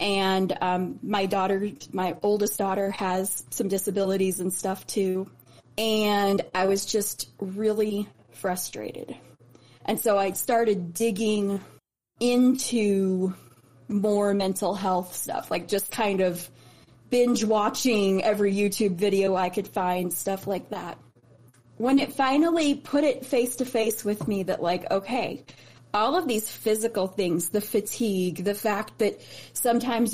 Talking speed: 130 wpm